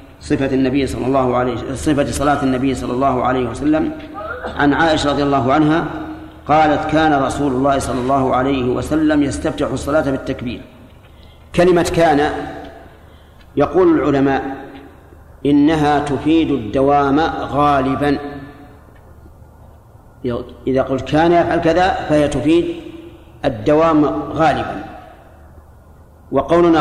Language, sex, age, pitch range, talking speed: Arabic, male, 40-59, 130-155 Hz, 105 wpm